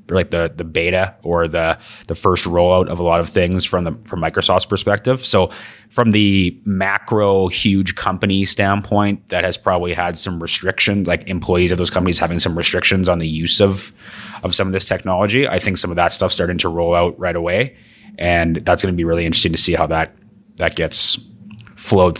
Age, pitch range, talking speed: 30-49, 80-100 Hz, 205 wpm